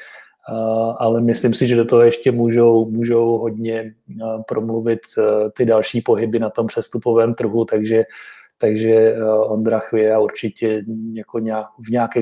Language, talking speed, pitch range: Czech, 135 wpm, 110-120 Hz